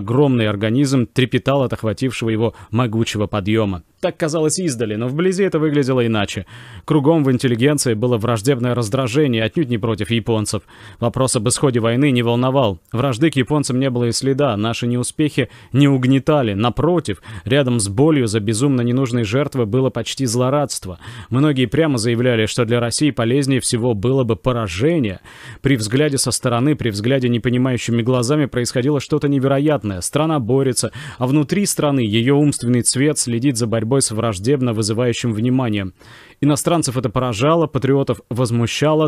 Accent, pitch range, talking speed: native, 115-145 Hz, 145 wpm